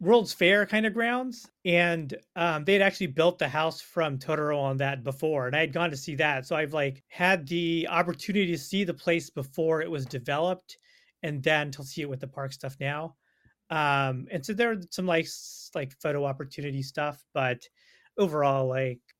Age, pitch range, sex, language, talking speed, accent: 30-49, 140-175 Hz, male, English, 195 wpm, American